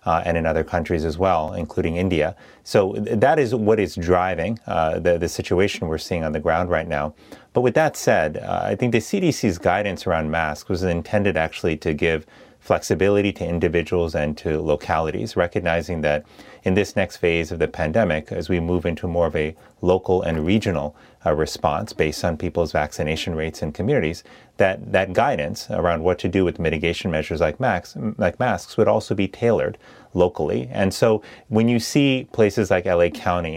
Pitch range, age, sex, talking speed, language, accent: 80-100 Hz, 30-49, male, 190 wpm, English, American